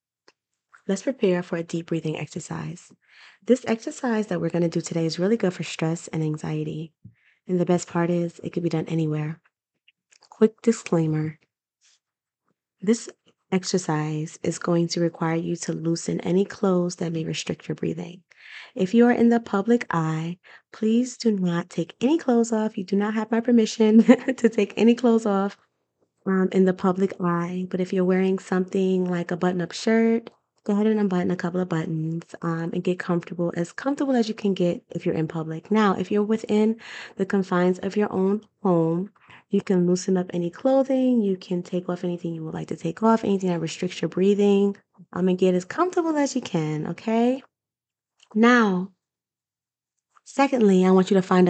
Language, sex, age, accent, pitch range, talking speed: English, female, 20-39, American, 170-215 Hz, 185 wpm